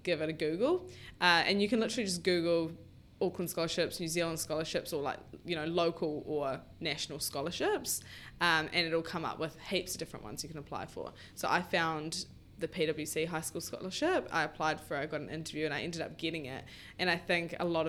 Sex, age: female, 20-39